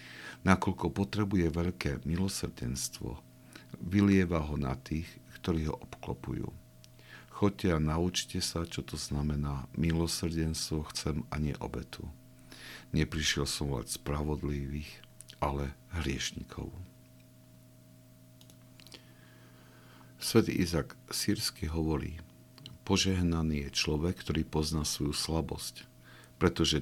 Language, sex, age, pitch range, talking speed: Slovak, male, 50-69, 70-85 Hz, 90 wpm